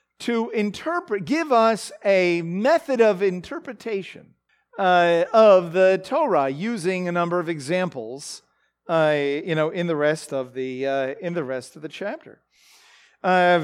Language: English